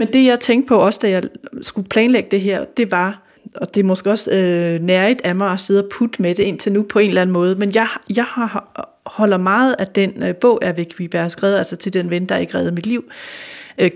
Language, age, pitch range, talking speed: Danish, 30-49, 185-225 Hz, 260 wpm